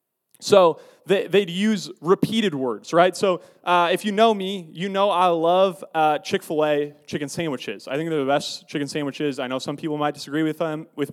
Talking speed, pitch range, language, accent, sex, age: 195 wpm, 160-220 Hz, English, American, male, 20-39